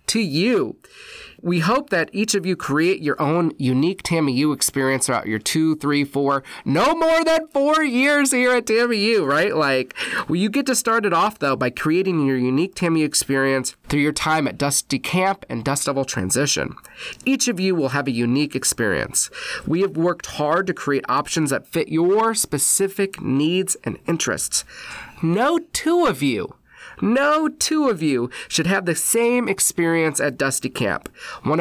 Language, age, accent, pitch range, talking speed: English, 30-49, American, 145-210 Hz, 175 wpm